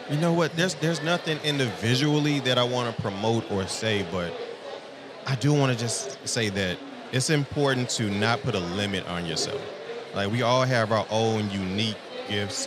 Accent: American